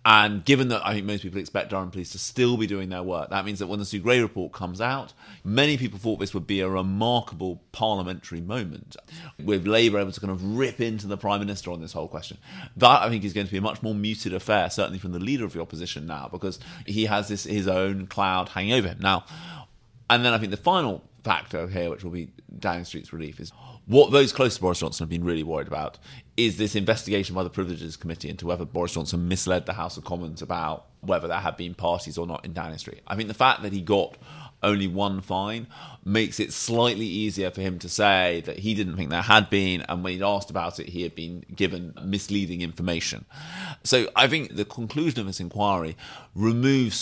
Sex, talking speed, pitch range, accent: male, 230 wpm, 90-110 Hz, British